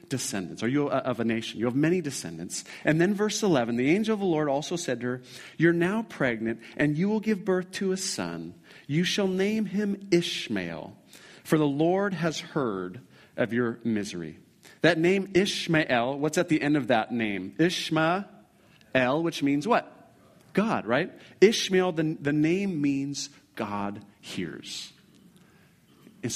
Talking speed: 160 wpm